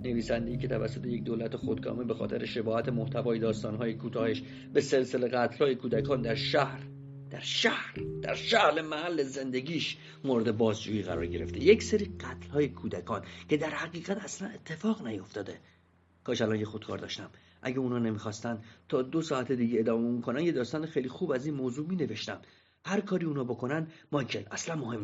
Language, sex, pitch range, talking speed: Persian, male, 105-150 Hz, 165 wpm